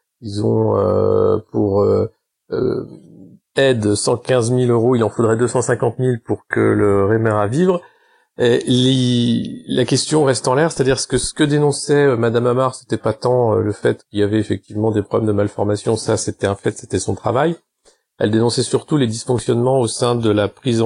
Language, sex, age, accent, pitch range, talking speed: French, male, 40-59, French, 105-125 Hz, 185 wpm